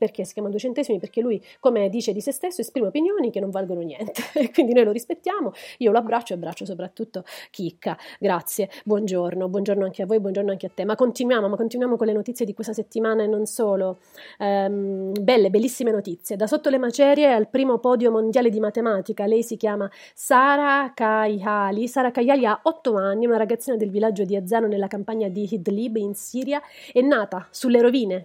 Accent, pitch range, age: native, 200-250 Hz, 30-49